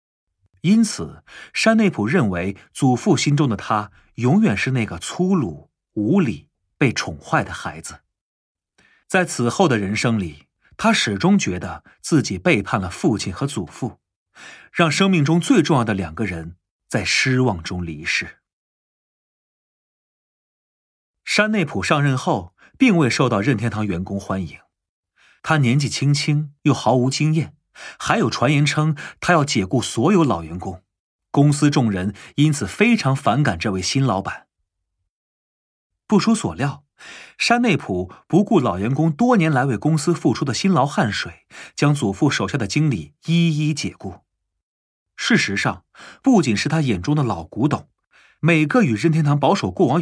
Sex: male